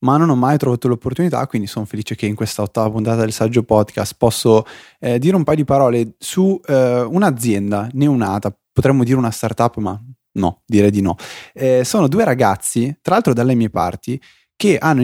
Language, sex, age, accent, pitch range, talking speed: Italian, male, 20-39, native, 110-145 Hz, 190 wpm